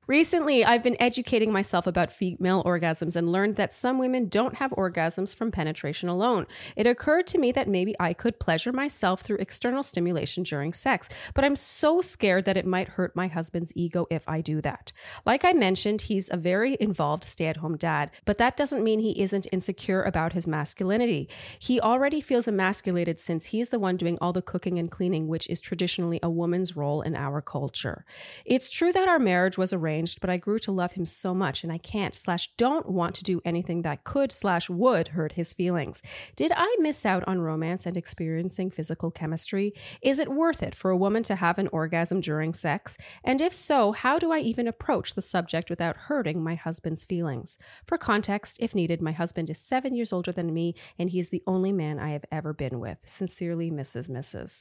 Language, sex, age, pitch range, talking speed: English, female, 30-49, 165-225 Hz, 205 wpm